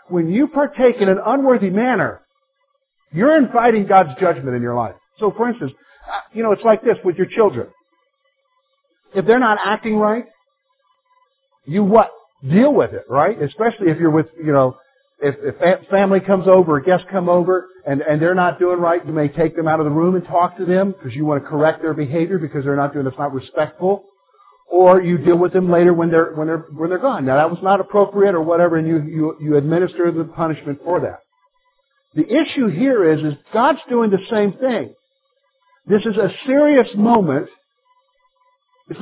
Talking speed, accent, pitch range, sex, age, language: 195 wpm, American, 170-255 Hz, male, 50-69, English